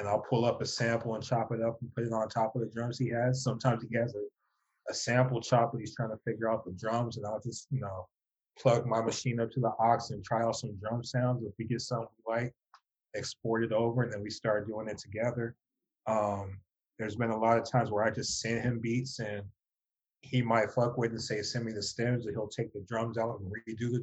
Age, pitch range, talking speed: 30-49, 110-125 Hz, 255 wpm